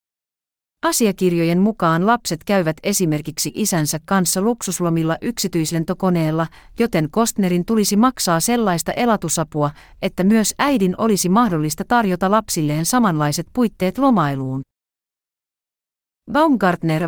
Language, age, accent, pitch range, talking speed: Finnish, 40-59, native, 155-200 Hz, 90 wpm